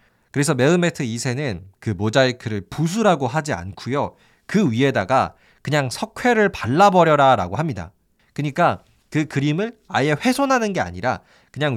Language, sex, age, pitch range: Korean, male, 20-39, 110-170 Hz